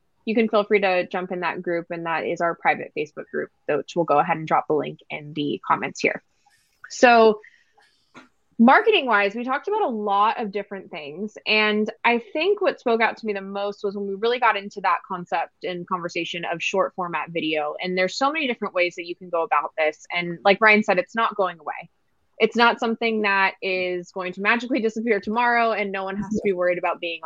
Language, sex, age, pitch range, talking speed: English, female, 20-39, 175-225 Hz, 225 wpm